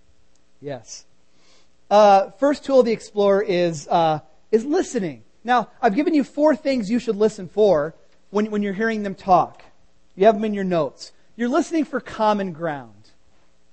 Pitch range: 150-235 Hz